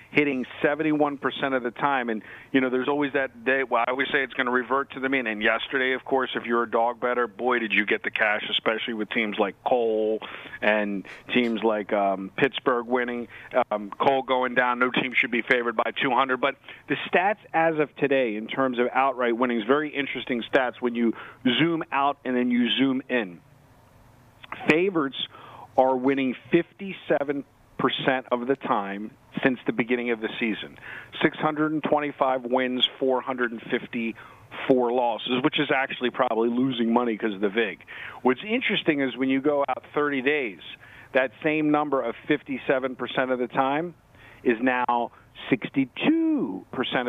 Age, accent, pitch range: 40-59, American, 120-140 Hz